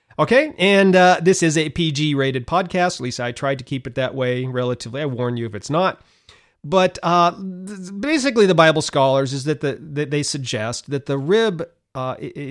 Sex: male